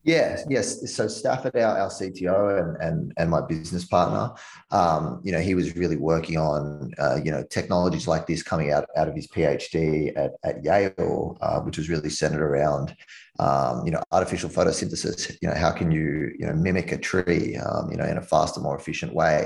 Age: 20-39